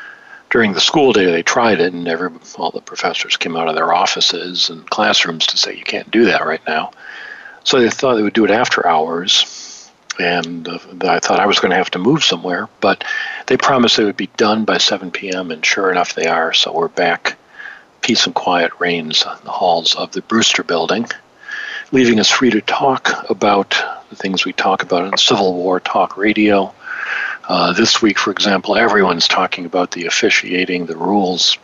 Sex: male